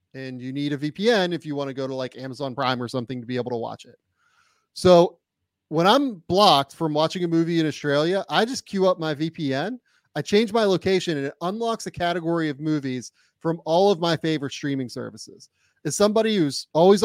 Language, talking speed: English, 210 wpm